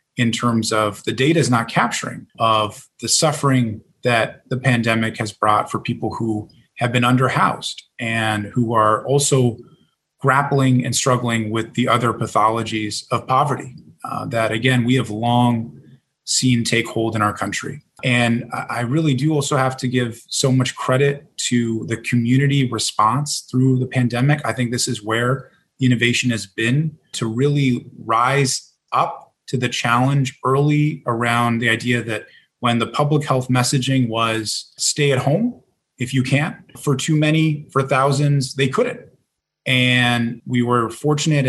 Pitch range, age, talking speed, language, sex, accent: 115-135 Hz, 30-49, 155 wpm, English, male, American